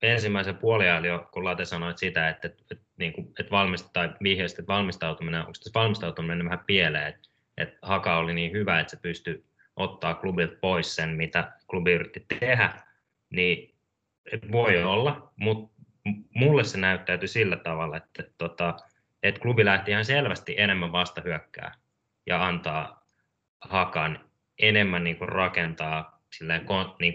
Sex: male